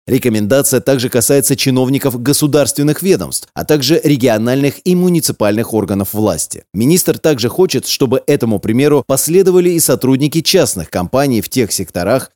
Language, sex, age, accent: Russian, male, 30-49, native